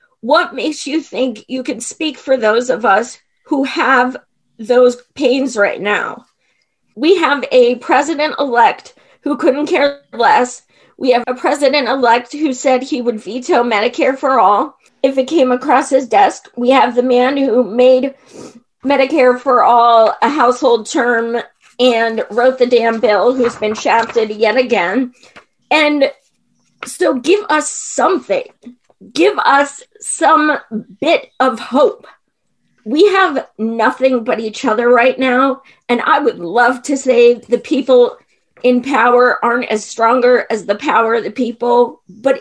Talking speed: 145 wpm